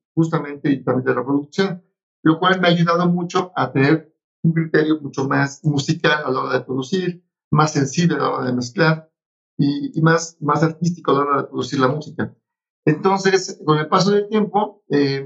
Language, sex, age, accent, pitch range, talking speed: Spanish, male, 50-69, Mexican, 140-165 Hz, 195 wpm